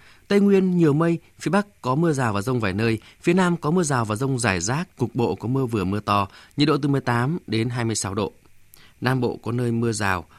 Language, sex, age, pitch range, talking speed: Vietnamese, male, 20-39, 105-145 Hz, 245 wpm